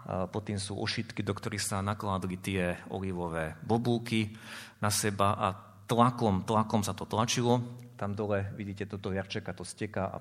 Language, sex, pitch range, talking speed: Slovak, male, 100-120 Hz, 165 wpm